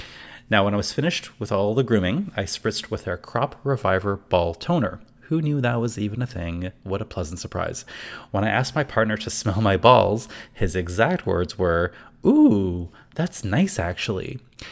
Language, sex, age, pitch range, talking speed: English, male, 30-49, 95-125 Hz, 185 wpm